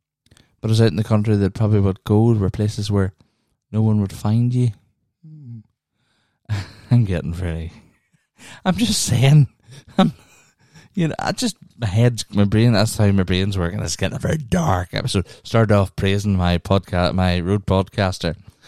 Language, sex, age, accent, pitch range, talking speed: English, male, 20-39, Irish, 95-115 Hz, 170 wpm